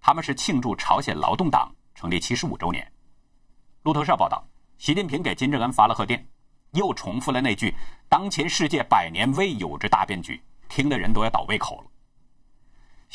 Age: 50-69